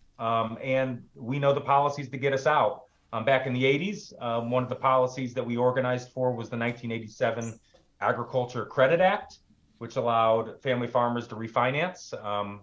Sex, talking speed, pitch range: male, 175 wpm, 110-130 Hz